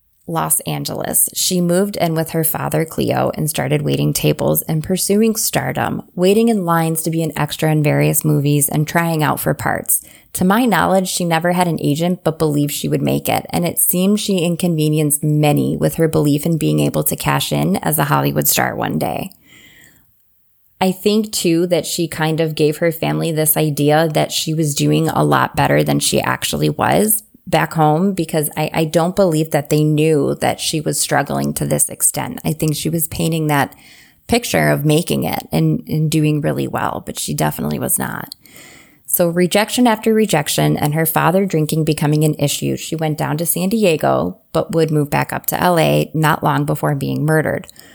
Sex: female